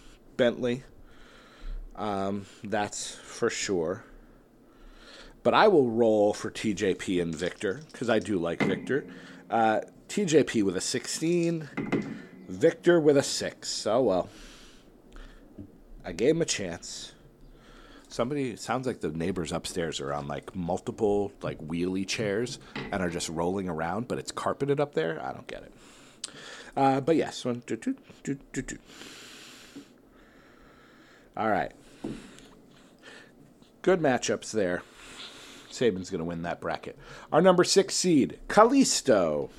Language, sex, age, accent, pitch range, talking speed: English, male, 40-59, American, 105-155 Hz, 125 wpm